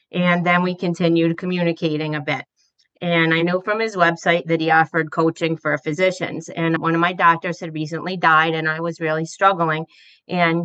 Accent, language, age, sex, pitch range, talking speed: American, English, 40-59, female, 160-180 Hz, 185 wpm